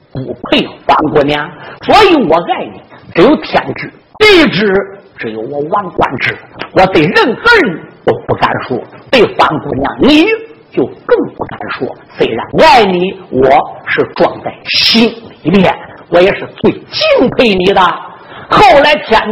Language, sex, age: Chinese, male, 50-69